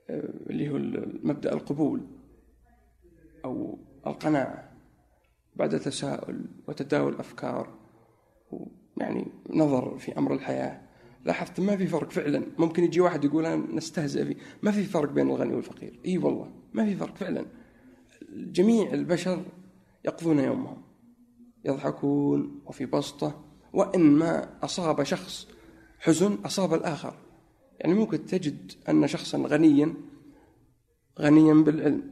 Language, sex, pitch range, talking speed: Arabic, male, 145-215 Hz, 110 wpm